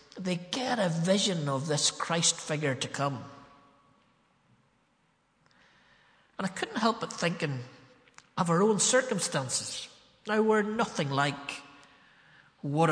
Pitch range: 140-210 Hz